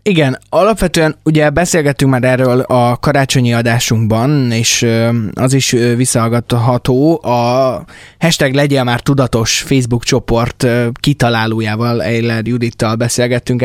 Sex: male